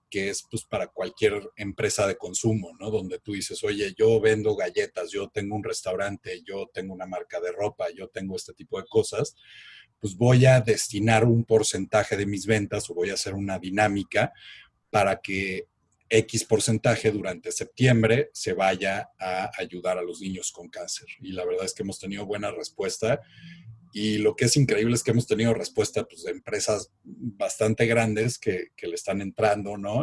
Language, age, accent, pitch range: Spanish, 40-59, Mexican, 105-150 Hz